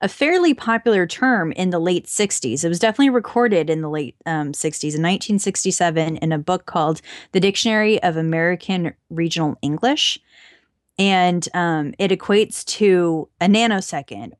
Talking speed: 145 wpm